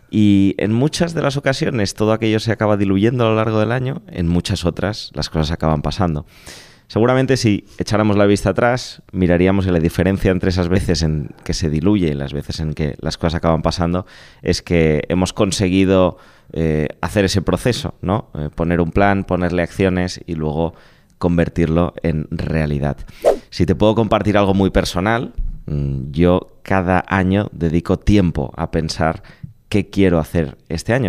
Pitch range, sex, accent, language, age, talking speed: 85-110 Hz, male, Spanish, Spanish, 30-49, 170 wpm